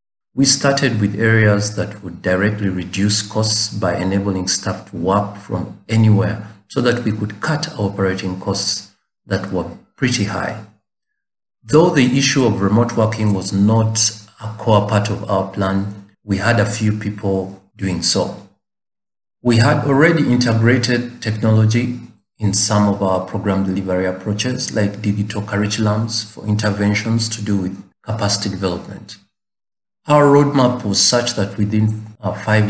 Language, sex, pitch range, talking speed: English, male, 100-110 Hz, 140 wpm